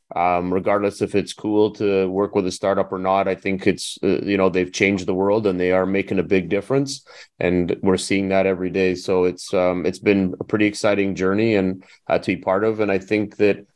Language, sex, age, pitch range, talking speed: English, male, 30-49, 95-105 Hz, 235 wpm